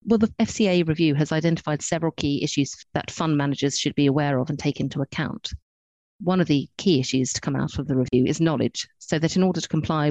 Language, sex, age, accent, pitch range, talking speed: English, female, 40-59, British, 140-155 Hz, 230 wpm